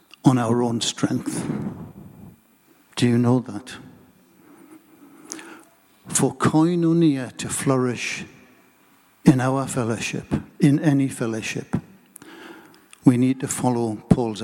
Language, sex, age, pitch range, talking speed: English, male, 60-79, 125-160 Hz, 95 wpm